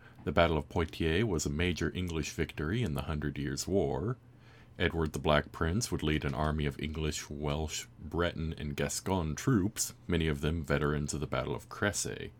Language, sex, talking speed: English, male, 185 wpm